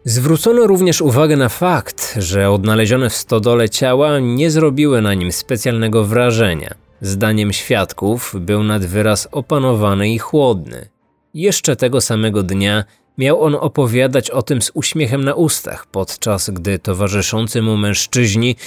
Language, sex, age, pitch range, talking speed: Polish, male, 20-39, 105-140 Hz, 135 wpm